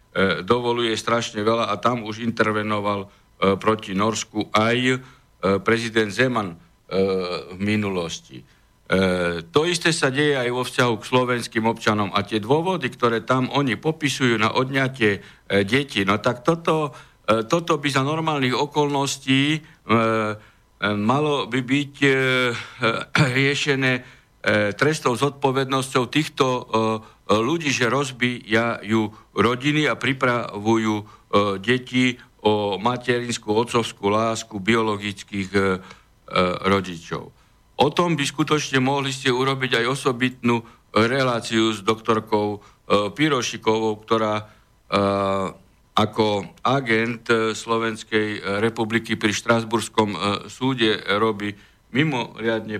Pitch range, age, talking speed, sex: 105-130 Hz, 60-79, 95 wpm, male